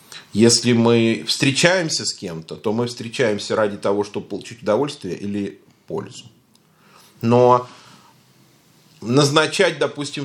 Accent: native